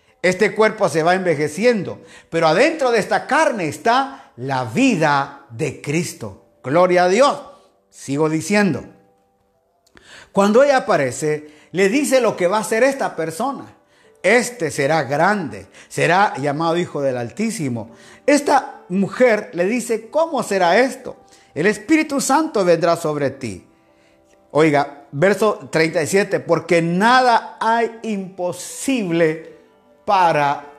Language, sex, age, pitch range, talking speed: Spanish, male, 50-69, 155-225 Hz, 120 wpm